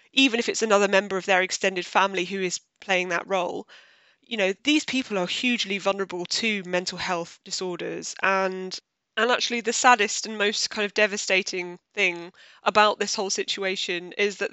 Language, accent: English, British